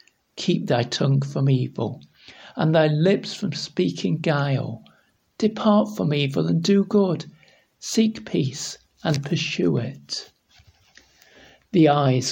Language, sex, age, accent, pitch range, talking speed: English, male, 60-79, British, 140-185 Hz, 115 wpm